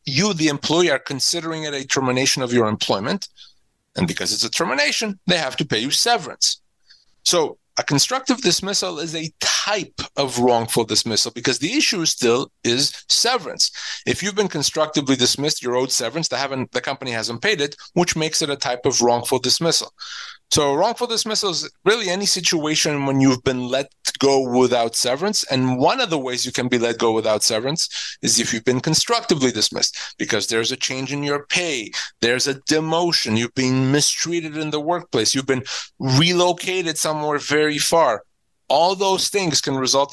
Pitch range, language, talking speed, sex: 125-160 Hz, English, 180 wpm, male